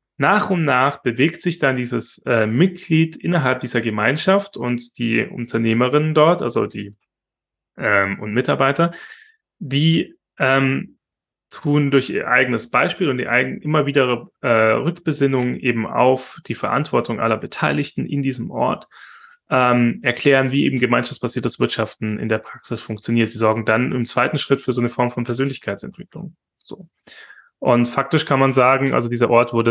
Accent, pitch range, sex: German, 115-135 Hz, male